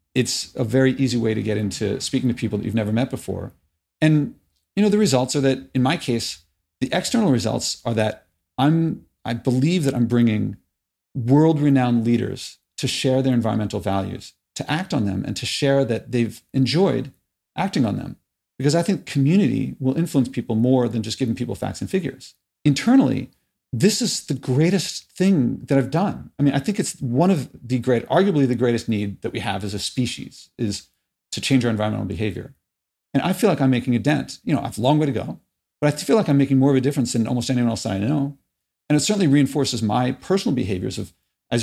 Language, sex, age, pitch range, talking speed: English, male, 40-59, 110-140 Hz, 215 wpm